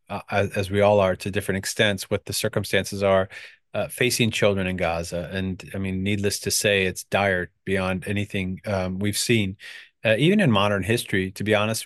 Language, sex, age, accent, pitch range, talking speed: English, male, 30-49, American, 95-110 Hz, 185 wpm